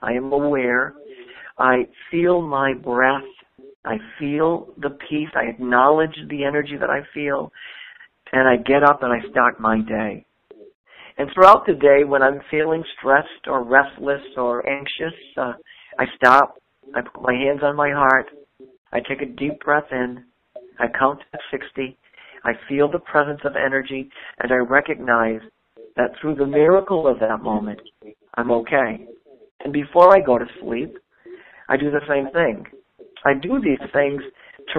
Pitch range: 130-160 Hz